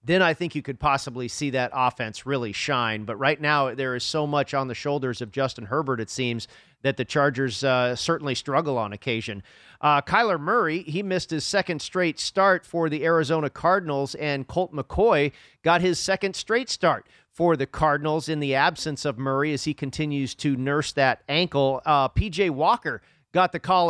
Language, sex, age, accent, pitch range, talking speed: English, male, 40-59, American, 140-175 Hz, 190 wpm